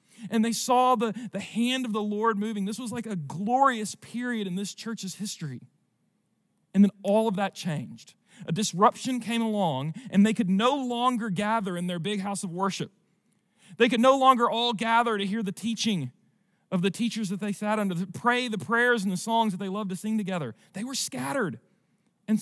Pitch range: 165-215 Hz